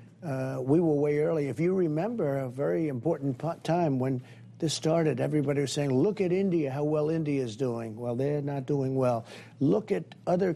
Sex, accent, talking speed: male, American, 200 wpm